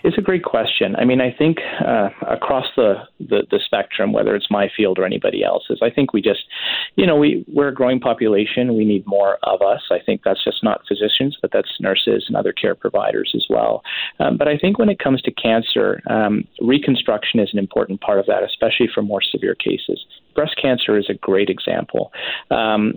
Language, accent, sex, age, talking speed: English, American, male, 40-59, 210 wpm